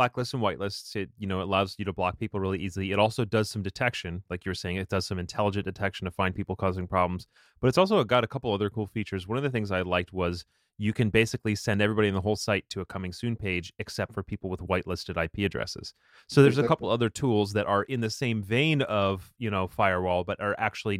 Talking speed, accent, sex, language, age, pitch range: 255 wpm, American, male, English, 30-49, 95-125 Hz